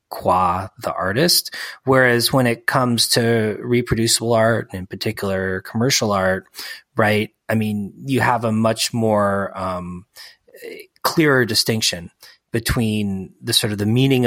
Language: English